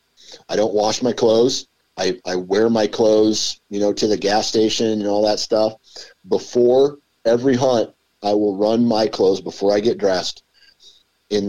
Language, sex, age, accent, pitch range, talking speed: English, male, 40-59, American, 90-115 Hz, 170 wpm